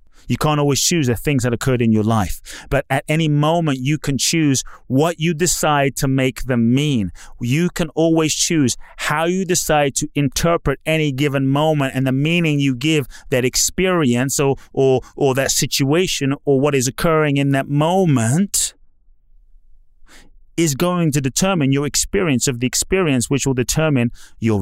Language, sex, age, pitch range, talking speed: English, male, 30-49, 130-170 Hz, 165 wpm